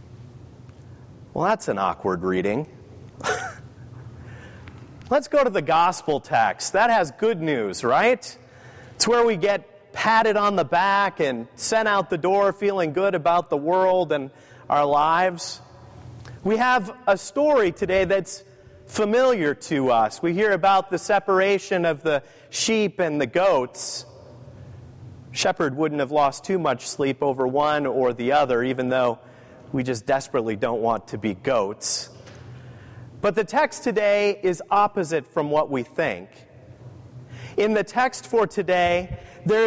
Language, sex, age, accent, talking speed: English, male, 30-49, American, 145 wpm